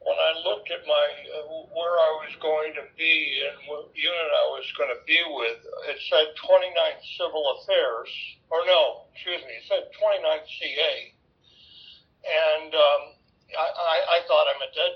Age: 60-79